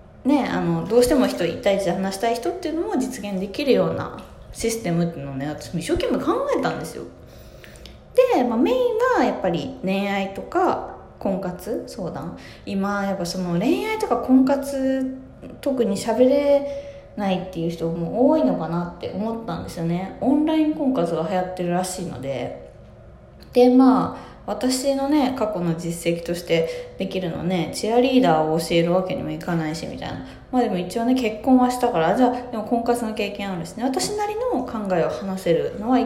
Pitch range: 170-255 Hz